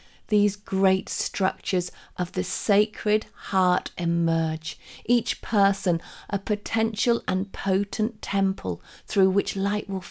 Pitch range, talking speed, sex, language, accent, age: 185-230 Hz, 115 wpm, female, English, British, 40-59